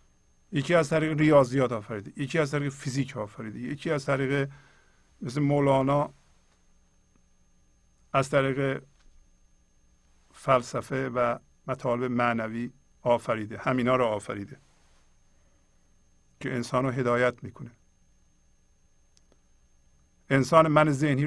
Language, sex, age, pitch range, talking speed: Persian, male, 50-69, 105-160 Hz, 90 wpm